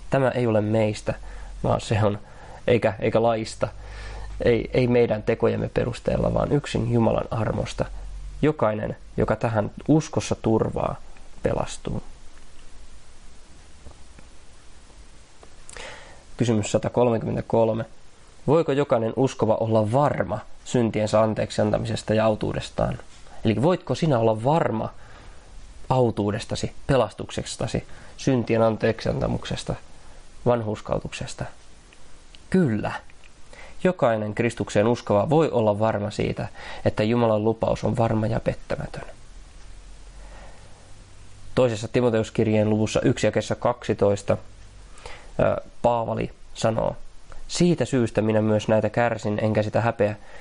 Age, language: 20-39, Finnish